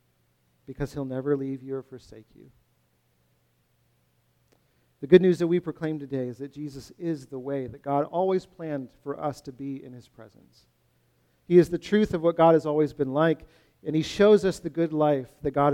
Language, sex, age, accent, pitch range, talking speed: English, male, 40-59, American, 110-155 Hz, 200 wpm